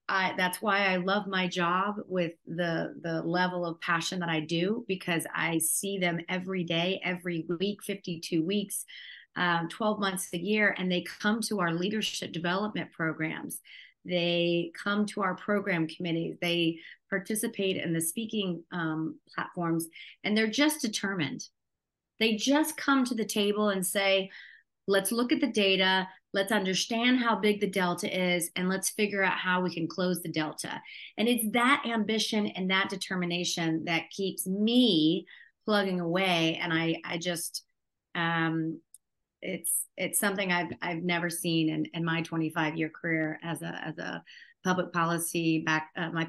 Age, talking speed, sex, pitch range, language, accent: 30-49, 165 wpm, female, 165-200 Hz, English, American